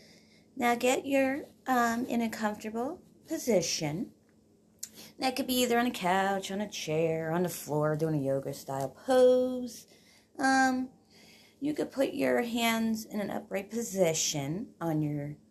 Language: English